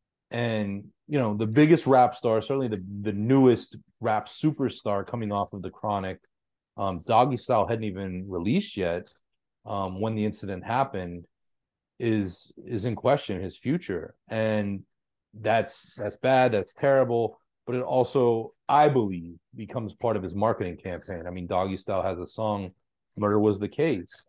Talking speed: 160 wpm